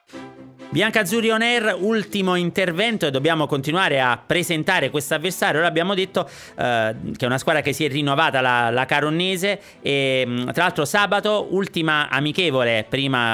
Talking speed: 145 wpm